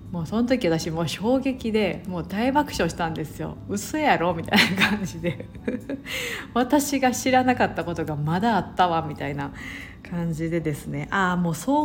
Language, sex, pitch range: Japanese, female, 165-245 Hz